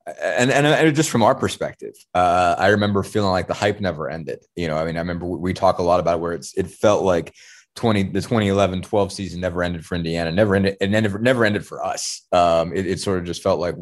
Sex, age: male, 20-39